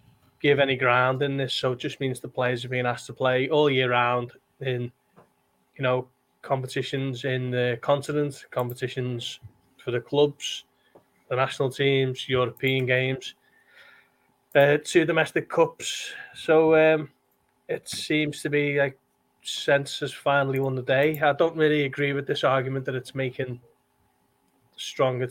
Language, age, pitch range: English, 20-39, 130-150 Hz